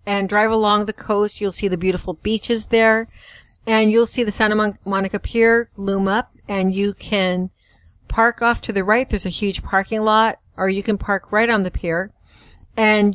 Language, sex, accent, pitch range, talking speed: English, female, American, 185-220 Hz, 190 wpm